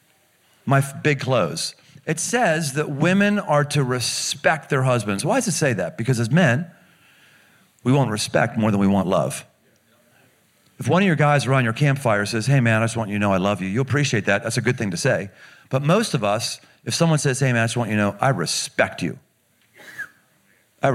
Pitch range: 125-175 Hz